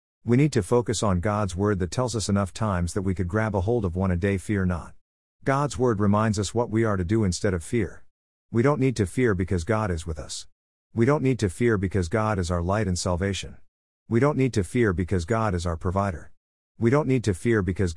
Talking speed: 245 wpm